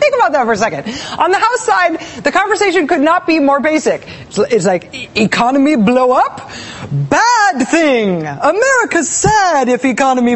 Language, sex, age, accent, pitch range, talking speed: English, female, 30-49, American, 215-305 Hz, 170 wpm